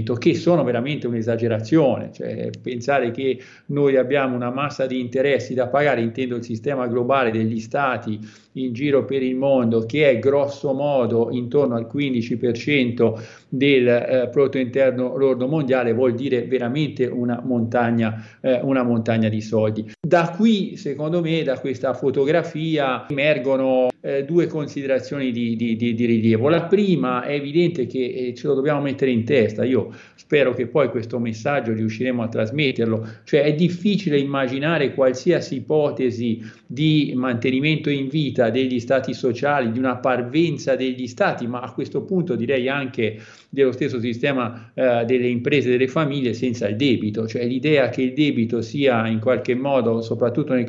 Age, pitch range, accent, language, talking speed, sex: 40-59, 120-140 Hz, native, Italian, 155 wpm, male